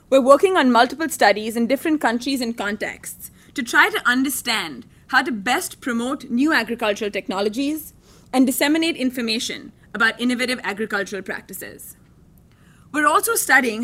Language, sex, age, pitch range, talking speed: English, female, 20-39, 220-285 Hz, 135 wpm